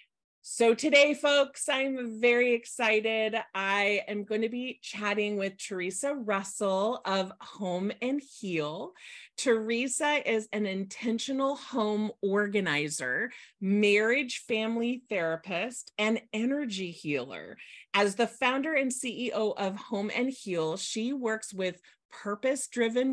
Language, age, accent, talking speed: English, 30-49, American, 115 wpm